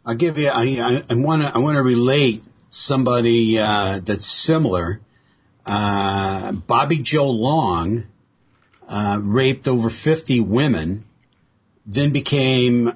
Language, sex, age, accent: English, male, 60-79, American